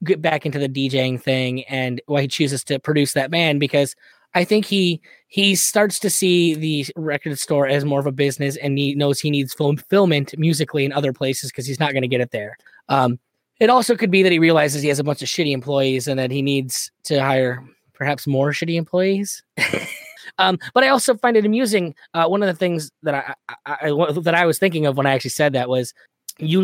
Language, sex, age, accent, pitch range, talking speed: English, male, 20-39, American, 140-175 Hz, 230 wpm